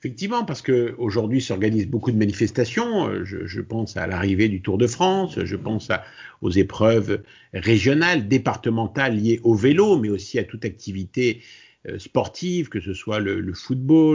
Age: 50-69